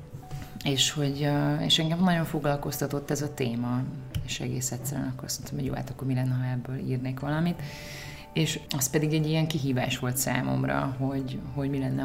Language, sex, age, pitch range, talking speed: English, female, 30-49, 125-145 Hz, 175 wpm